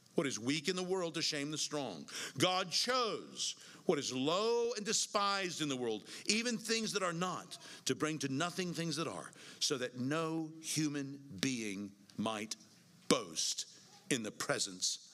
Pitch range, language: 145-210 Hz, English